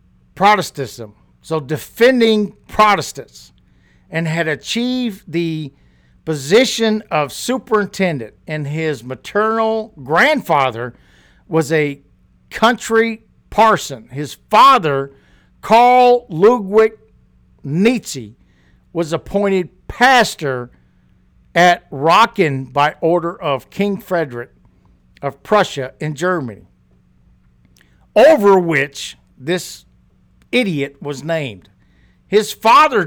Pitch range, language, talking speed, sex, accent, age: 135-215 Hz, English, 85 wpm, male, American, 60-79